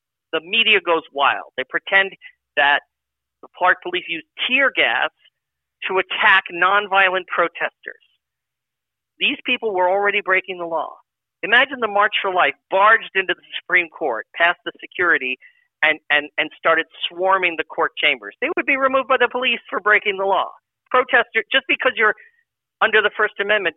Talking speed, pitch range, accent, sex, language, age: 160 wpm, 170-245 Hz, American, male, English, 50-69